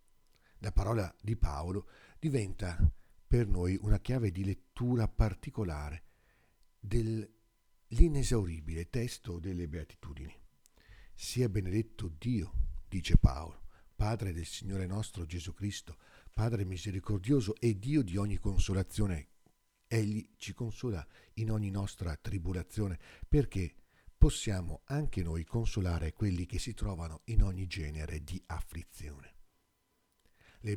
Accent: native